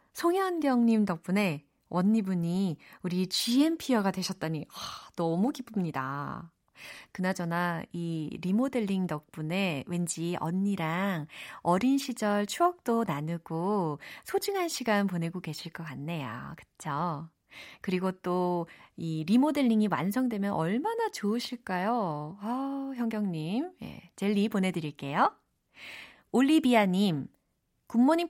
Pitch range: 175-270 Hz